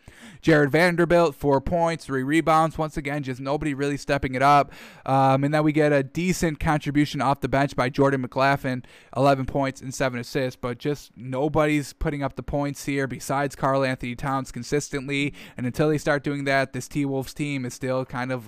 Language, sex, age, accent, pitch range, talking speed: English, male, 10-29, American, 135-150 Hz, 190 wpm